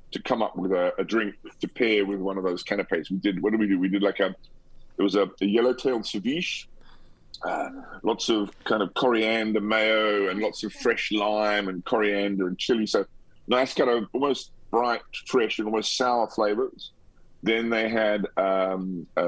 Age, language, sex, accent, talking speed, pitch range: 40-59, English, male, British, 195 wpm, 95-110 Hz